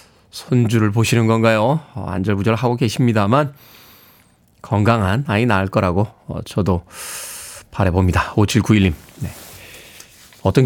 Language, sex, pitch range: Korean, male, 110-160 Hz